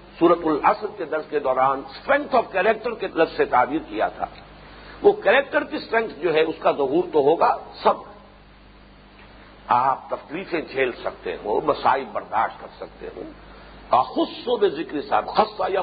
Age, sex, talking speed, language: 50-69, male, 150 wpm, English